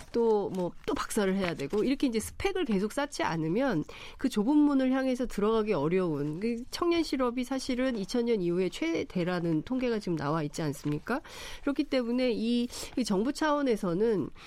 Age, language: 40-59, Korean